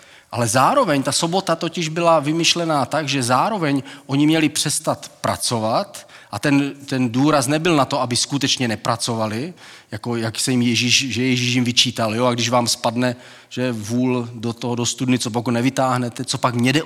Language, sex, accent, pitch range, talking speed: Czech, male, native, 120-140 Hz, 180 wpm